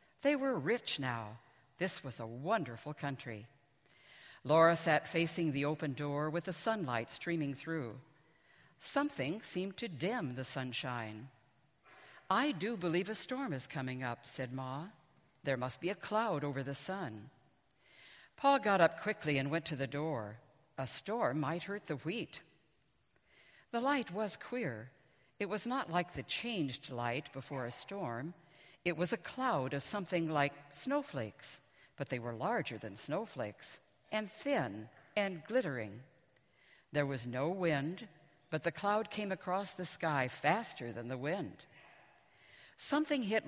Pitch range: 130-185 Hz